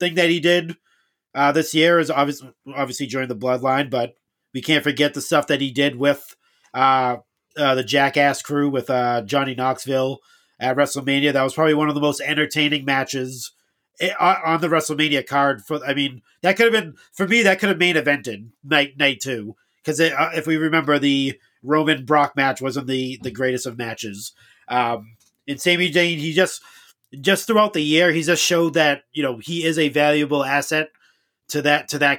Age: 40-59